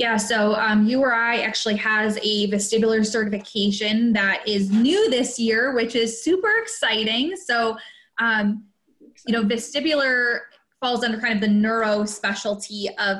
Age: 20-39